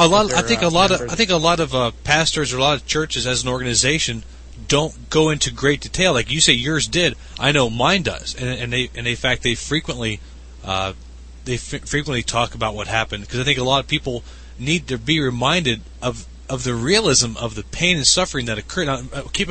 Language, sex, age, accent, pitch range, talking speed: English, male, 30-49, American, 115-165 Hz, 235 wpm